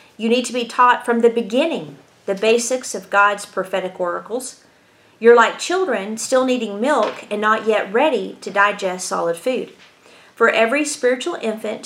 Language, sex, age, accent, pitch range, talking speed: English, female, 40-59, American, 205-275 Hz, 160 wpm